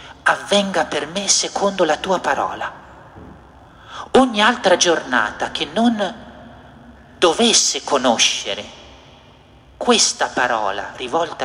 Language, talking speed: Italian, 90 wpm